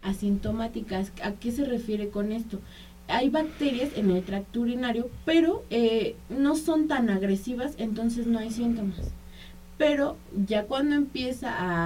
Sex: female